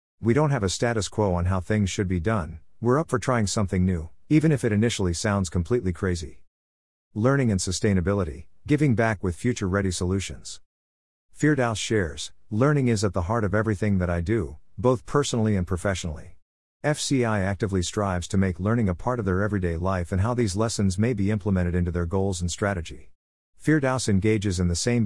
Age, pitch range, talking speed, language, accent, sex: 50-69, 90-115 Hz, 185 wpm, English, American, male